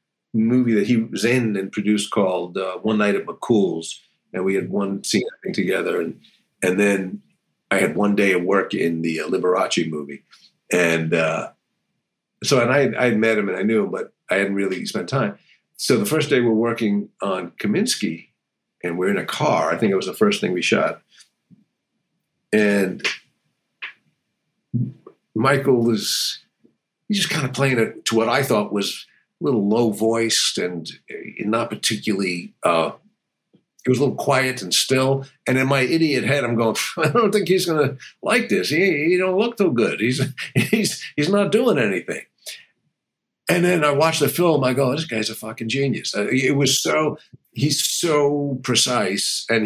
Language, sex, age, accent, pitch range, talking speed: English, male, 50-69, American, 105-140 Hz, 180 wpm